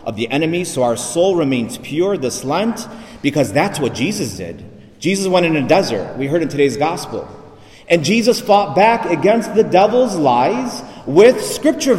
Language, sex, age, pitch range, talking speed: English, male, 40-59, 140-215 Hz, 175 wpm